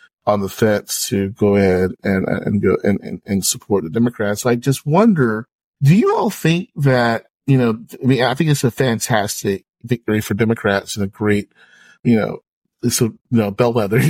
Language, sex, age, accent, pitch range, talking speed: English, male, 40-59, American, 110-135 Hz, 190 wpm